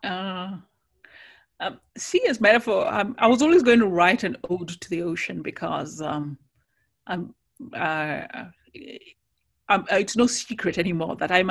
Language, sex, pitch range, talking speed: English, female, 155-200 Hz, 135 wpm